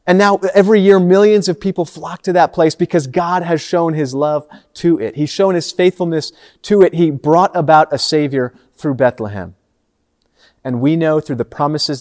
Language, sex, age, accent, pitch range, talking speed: English, male, 30-49, American, 125-170 Hz, 190 wpm